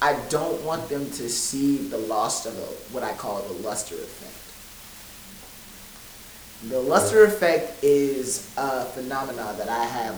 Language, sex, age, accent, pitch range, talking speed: English, male, 30-49, American, 120-140 Hz, 145 wpm